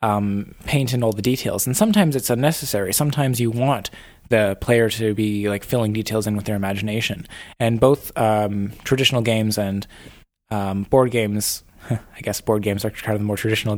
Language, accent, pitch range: English, American, 110-135 Hz